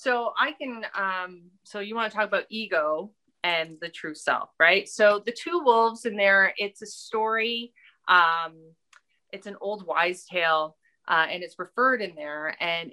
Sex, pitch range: female, 180-235 Hz